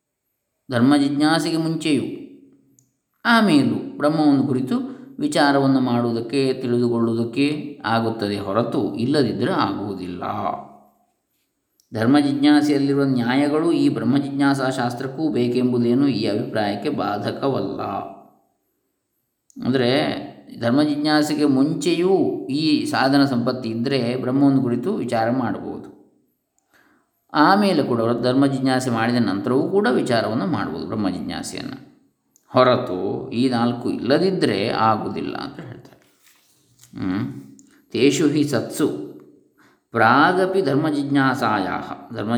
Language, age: Kannada, 20-39